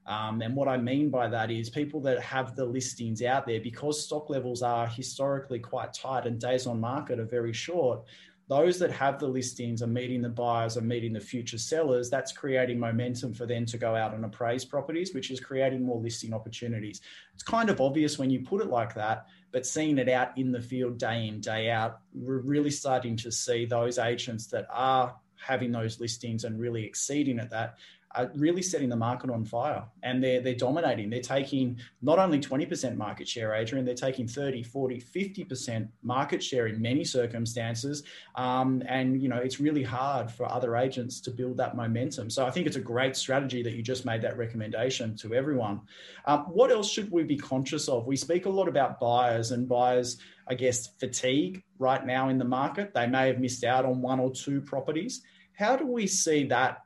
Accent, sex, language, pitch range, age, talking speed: Australian, male, English, 120-135 Hz, 20-39, 205 wpm